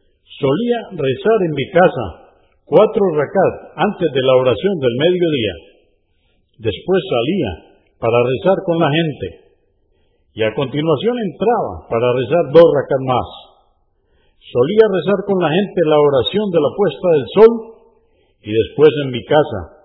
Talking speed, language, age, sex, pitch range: 140 wpm, Spanish, 50-69, male, 125-210 Hz